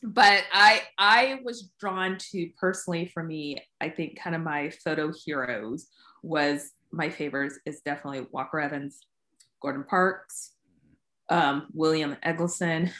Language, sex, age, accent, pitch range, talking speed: English, female, 20-39, American, 150-180 Hz, 130 wpm